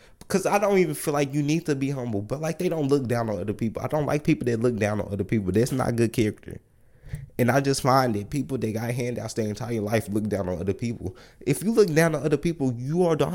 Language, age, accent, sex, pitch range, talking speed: English, 20-39, American, male, 115-150 Hz, 275 wpm